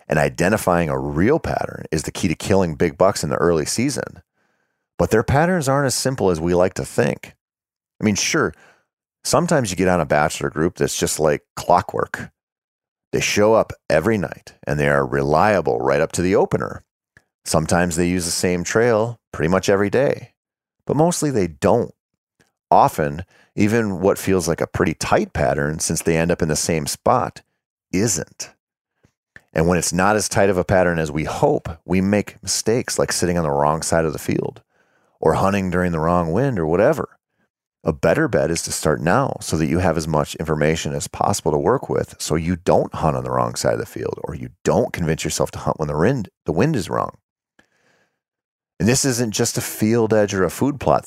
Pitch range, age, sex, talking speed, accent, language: 80-105 Hz, 40-59, male, 205 wpm, American, English